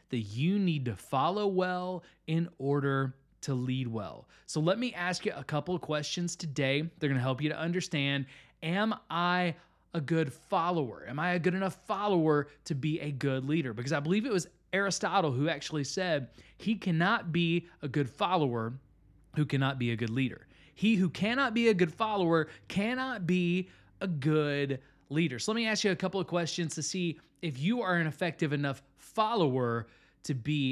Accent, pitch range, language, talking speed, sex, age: American, 125-180 Hz, English, 190 wpm, male, 20-39